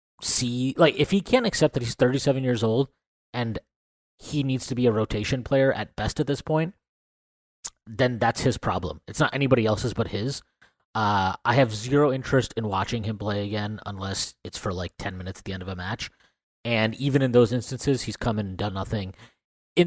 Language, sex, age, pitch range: English, male, 30-49, 105-135 Hz